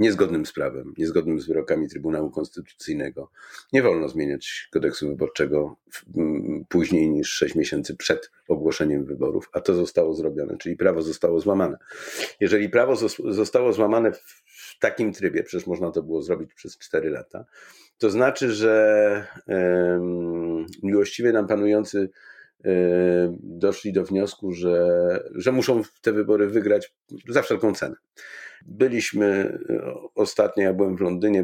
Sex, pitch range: male, 90-105 Hz